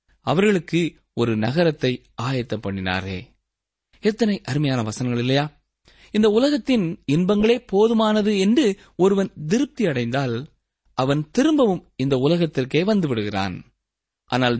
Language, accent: Tamil, native